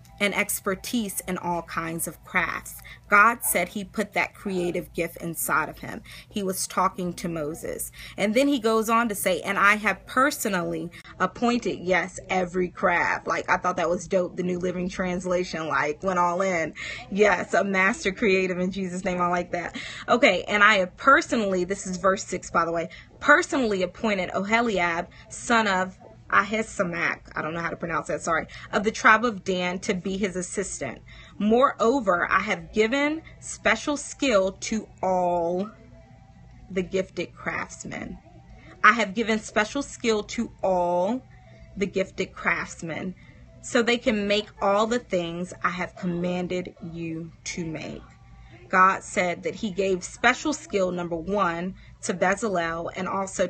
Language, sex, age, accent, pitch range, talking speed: English, female, 20-39, American, 175-215 Hz, 160 wpm